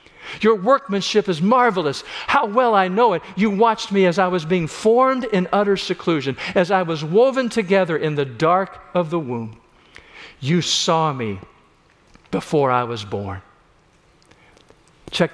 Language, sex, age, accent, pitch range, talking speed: English, male, 50-69, American, 135-190 Hz, 155 wpm